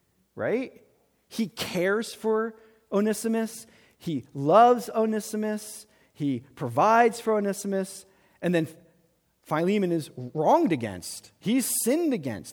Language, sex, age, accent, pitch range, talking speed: English, male, 40-59, American, 165-235 Hz, 100 wpm